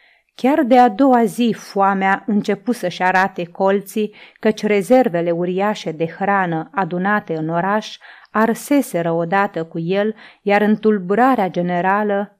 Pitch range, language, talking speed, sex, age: 175-215 Hz, Romanian, 125 wpm, female, 30-49